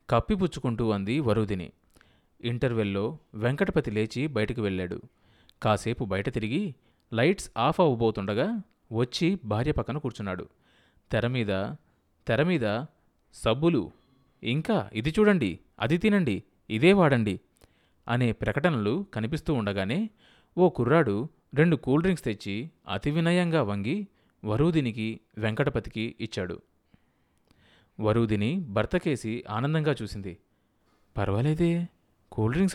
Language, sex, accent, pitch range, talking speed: Telugu, male, native, 105-160 Hz, 90 wpm